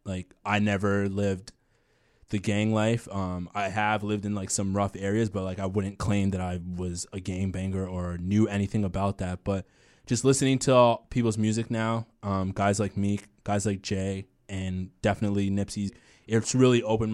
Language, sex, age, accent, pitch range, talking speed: English, male, 20-39, American, 100-115 Hz, 180 wpm